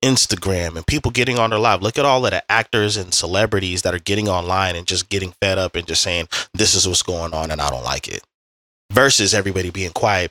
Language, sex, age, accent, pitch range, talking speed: English, male, 20-39, American, 90-115 Hz, 240 wpm